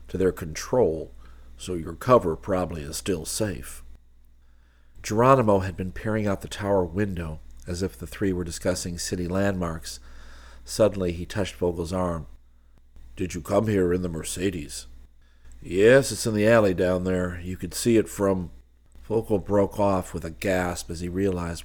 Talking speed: 165 wpm